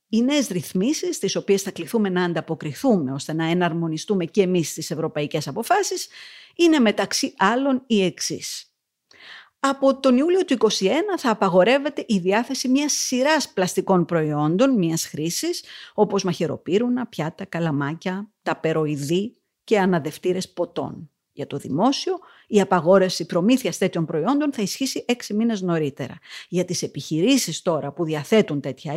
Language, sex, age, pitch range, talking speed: Greek, female, 50-69, 170-260 Hz, 135 wpm